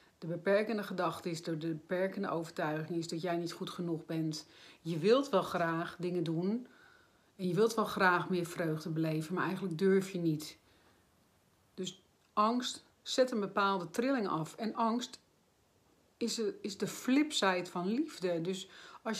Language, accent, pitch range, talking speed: Dutch, Dutch, 170-215 Hz, 155 wpm